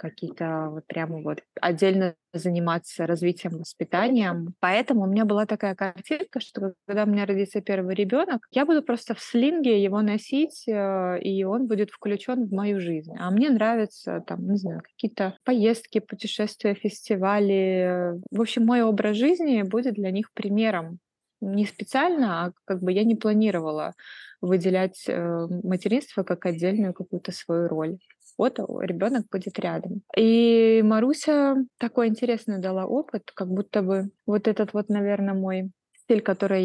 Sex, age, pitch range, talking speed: female, 20-39, 180-220 Hz, 145 wpm